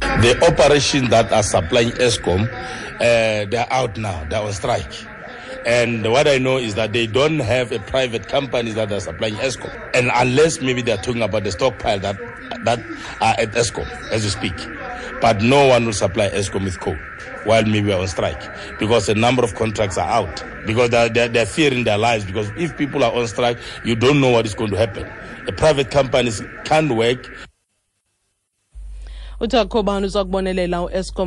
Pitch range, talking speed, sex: 115-175 Hz, 185 wpm, male